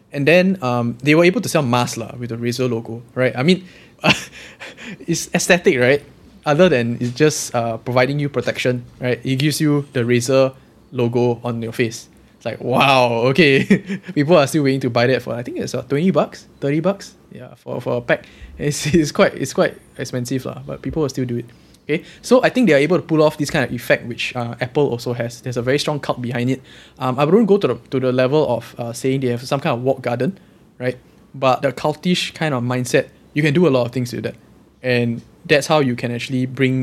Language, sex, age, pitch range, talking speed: English, male, 10-29, 120-145 Hz, 230 wpm